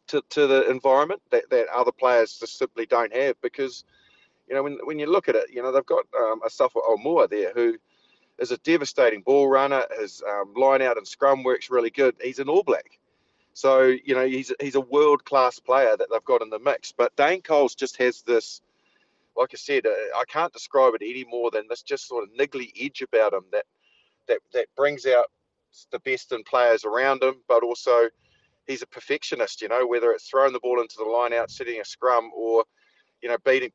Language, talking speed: English, 220 wpm